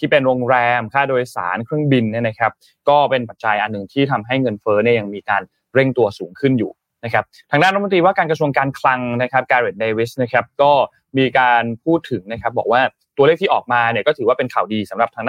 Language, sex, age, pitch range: Thai, male, 20-39, 115-145 Hz